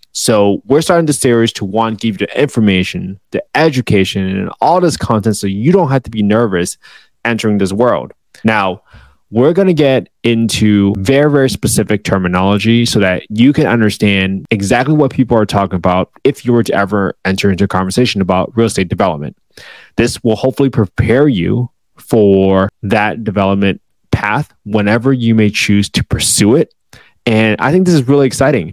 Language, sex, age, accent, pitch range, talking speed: English, male, 20-39, American, 100-125 Hz, 180 wpm